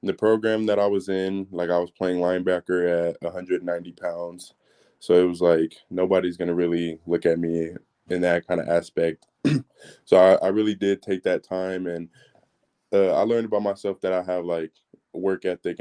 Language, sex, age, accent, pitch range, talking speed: English, male, 20-39, American, 85-90 Hz, 195 wpm